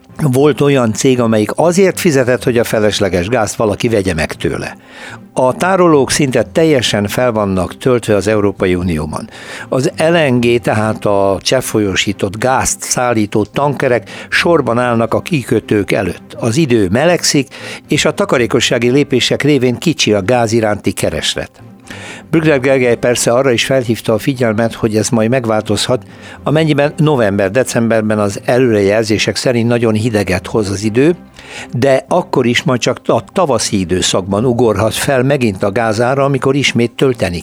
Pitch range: 105-130 Hz